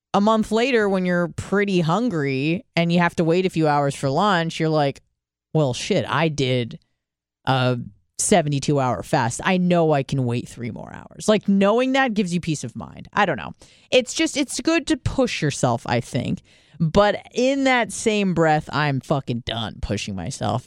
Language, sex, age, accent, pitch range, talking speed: English, female, 30-49, American, 130-175 Hz, 185 wpm